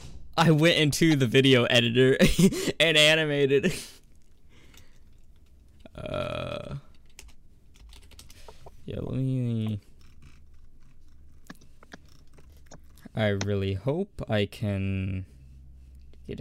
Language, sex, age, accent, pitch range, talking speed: English, male, 20-39, American, 70-120 Hz, 65 wpm